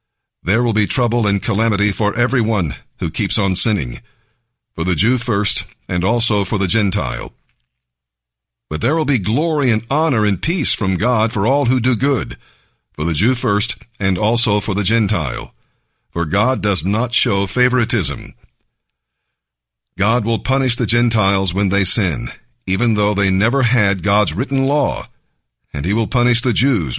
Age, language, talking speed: 50-69, English, 165 wpm